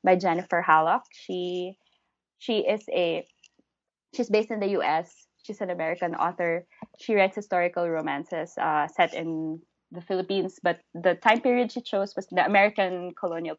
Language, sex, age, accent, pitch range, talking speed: English, female, 20-39, Filipino, 165-220 Hz, 155 wpm